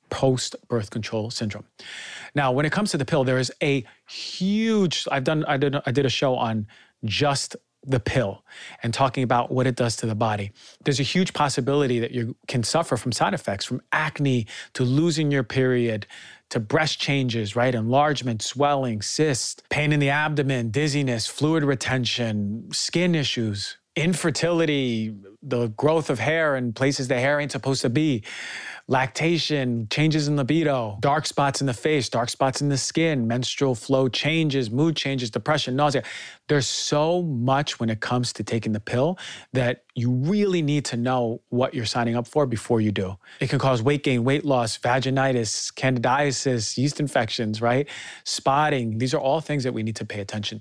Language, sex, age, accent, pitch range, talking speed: English, male, 40-59, American, 120-145 Hz, 180 wpm